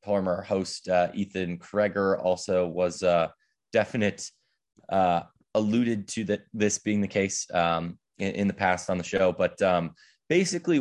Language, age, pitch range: English, 20-39, 95-110 Hz